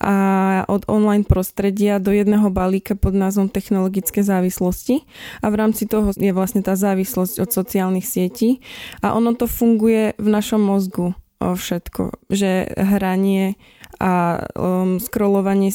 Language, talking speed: Slovak, 135 wpm